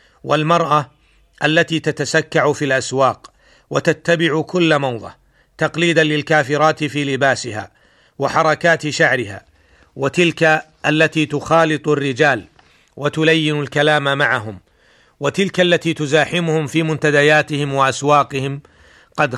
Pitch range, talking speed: 140-160 Hz, 85 wpm